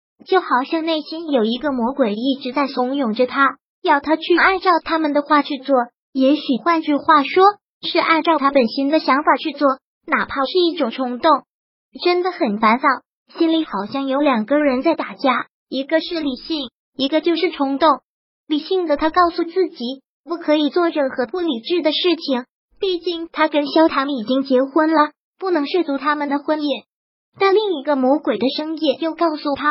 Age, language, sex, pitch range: 20-39, Chinese, male, 270-330 Hz